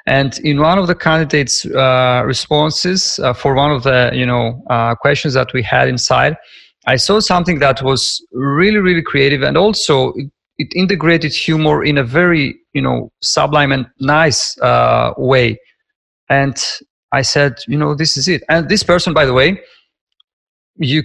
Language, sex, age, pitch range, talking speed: English, male, 40-59, 130-155 Hz, 170 wpm